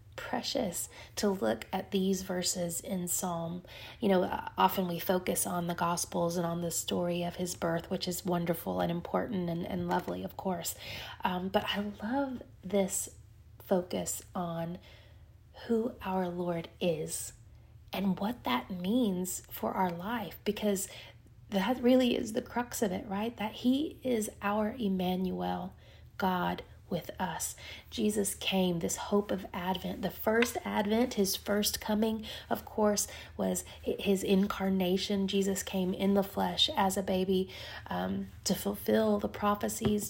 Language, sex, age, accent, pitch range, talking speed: English, female, 30-49, American, 165-205 Hz, 150 wpm